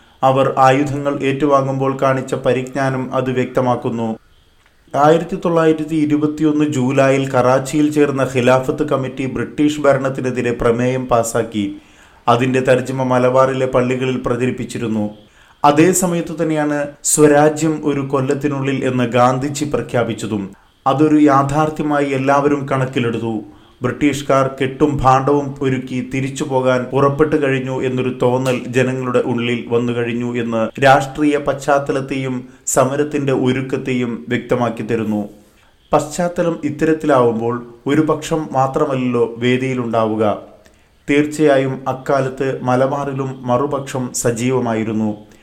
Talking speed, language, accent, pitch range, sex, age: 90 wpm, Malayalam, native, 120-140 Hz, male, 30-49